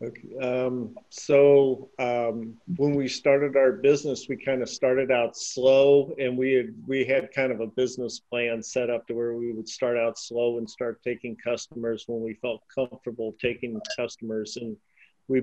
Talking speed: 175 wpm